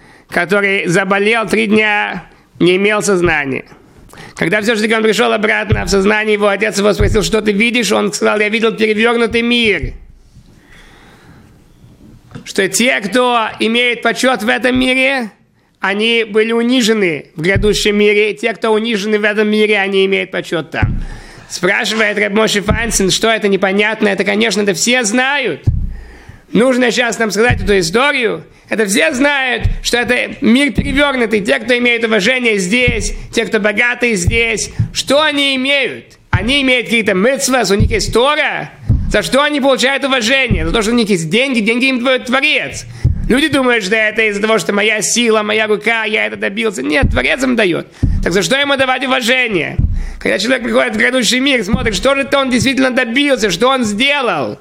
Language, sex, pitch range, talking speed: Russian, male, 210-250 Hz, 165 wpm